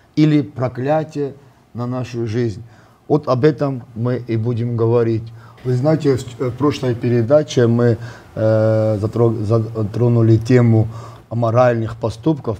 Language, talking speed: Russian, 110 wpm